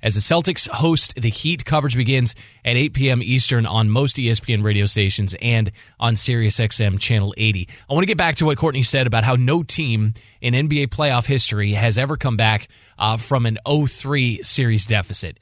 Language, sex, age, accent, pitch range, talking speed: English, male, 20-39, American, 110-155 Hz, 190 wpm